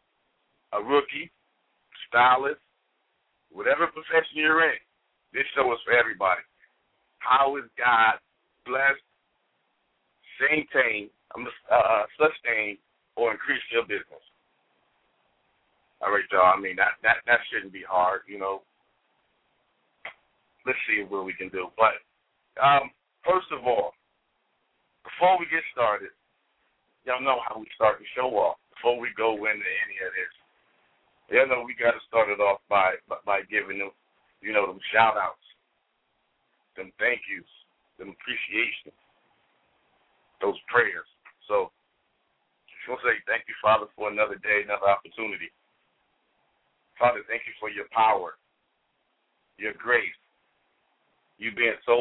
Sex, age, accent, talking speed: male, 50-69, American, 130 wpm